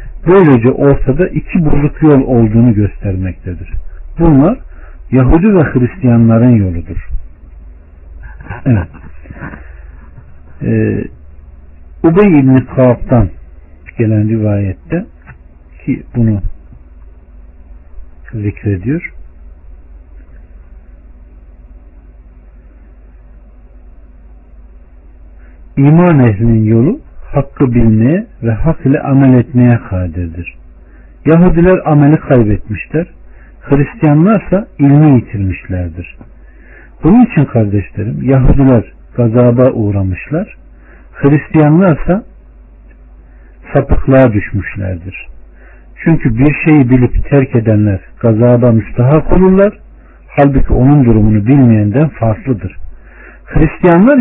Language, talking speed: Turkish, 75 wpm